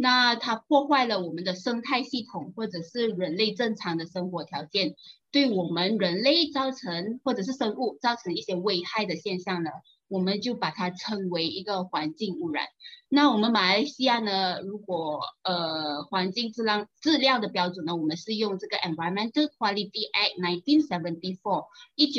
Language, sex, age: Chinese, female, 20-39